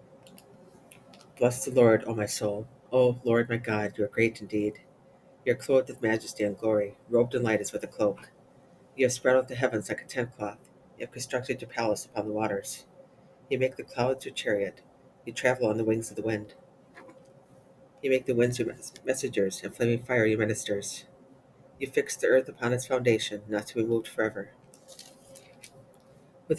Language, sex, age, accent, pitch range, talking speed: English, female, 40-59, American, 110-130 Hz, 185 wpm